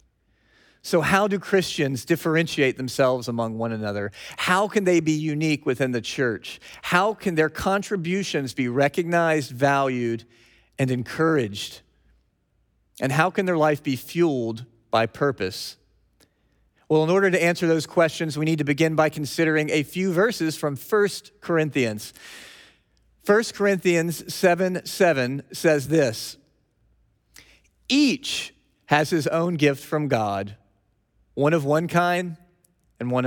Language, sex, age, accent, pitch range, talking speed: English, male, 40-59, American, 130-175 Hz, 130 wpm